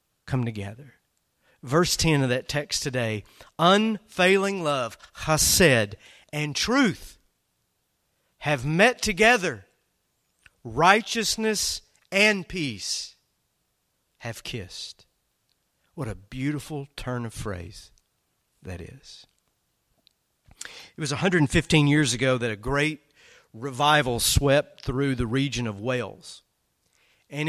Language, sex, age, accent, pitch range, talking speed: English, male, 40-59, American, 130-175 Hz, 100 wpm